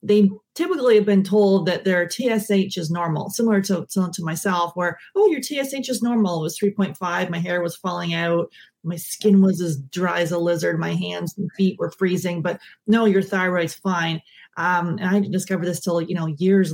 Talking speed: 200 wpm